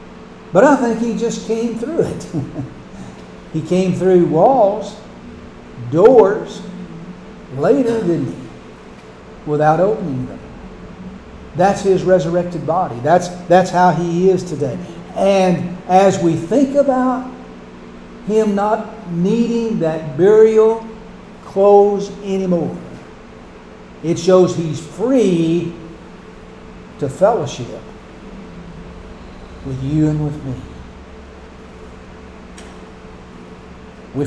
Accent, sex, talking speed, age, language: American, male, 95 wpm, 60-79, English